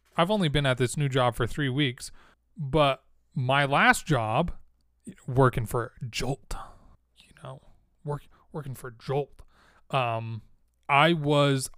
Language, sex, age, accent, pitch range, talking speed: English, male, 30-49, American, 115-155 Hz, 120 wpm